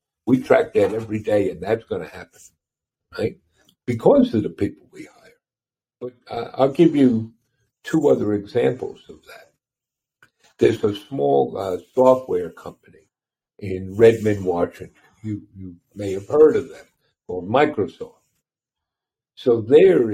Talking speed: 135 wpm